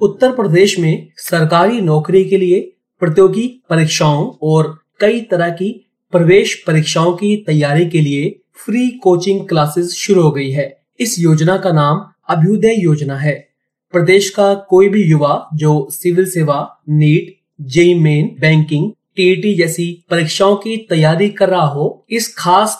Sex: male